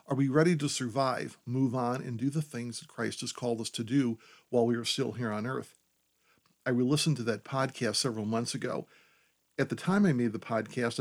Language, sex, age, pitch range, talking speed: English, male, 50-69, 115-140 Hz, 220 wpm